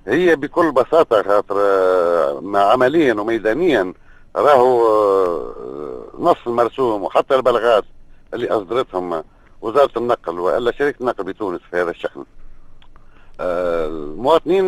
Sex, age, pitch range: male, 50-69, 120-185 Hz